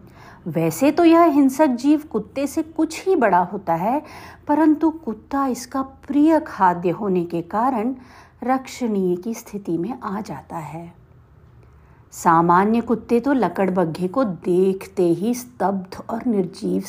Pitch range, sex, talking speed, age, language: 175-250 Hz, female, 130 wpm, 50-69, Hindi